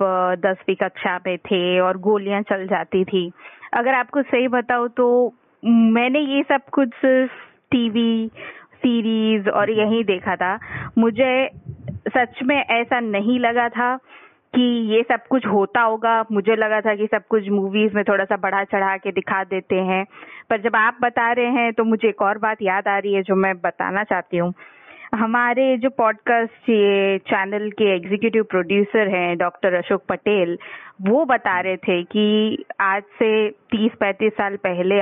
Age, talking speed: 20-39, 165 wpm